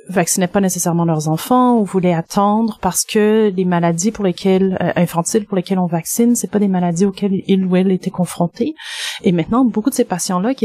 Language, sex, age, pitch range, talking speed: French, female, 30-49, 170-205 Hz, 210 wpm